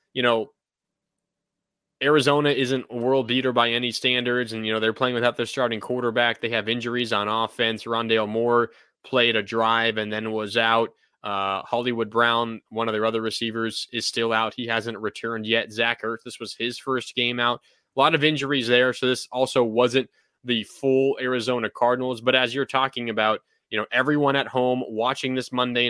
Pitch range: 110-125 Hz